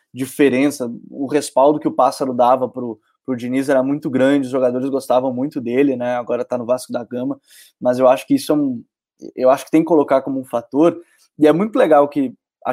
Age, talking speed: 20-39, 220 wpm